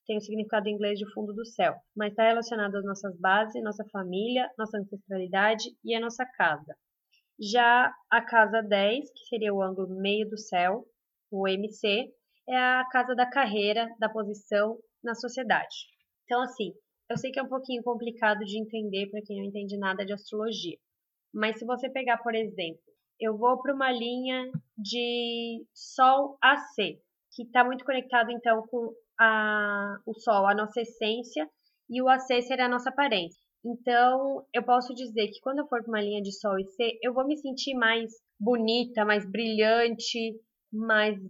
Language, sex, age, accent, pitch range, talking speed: Portuguese, female, 20-39, Brazilian, 210-245 Hz, 175 wpm